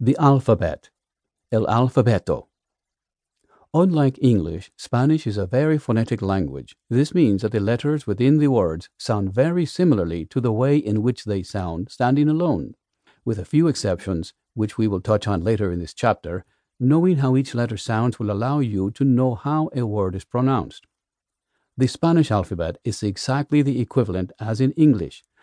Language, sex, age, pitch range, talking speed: English, male, 50-69, 100-135 Hz, 165 wpm